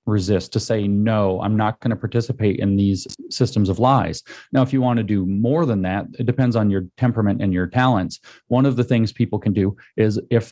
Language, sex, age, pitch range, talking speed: English, male, 30-49, 100-120 Hz, 230 wpm